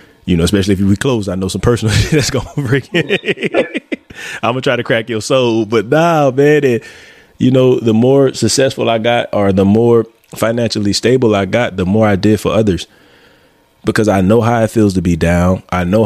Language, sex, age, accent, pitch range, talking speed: English, male, 20-39, American, 95-115 Hz, 215 wpm